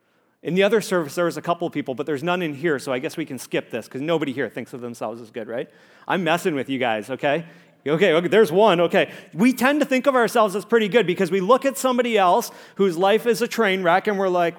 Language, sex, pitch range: English, male, 155-215 Hz